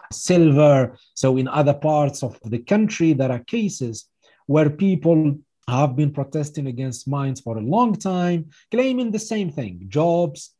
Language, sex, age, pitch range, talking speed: English, male, 40-59, 120-165 Hz, 155 wpm